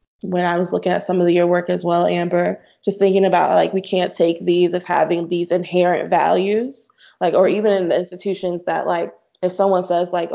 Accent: American